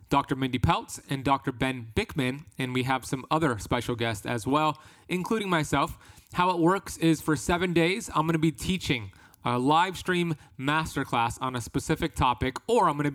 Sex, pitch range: male, 125-165 Hz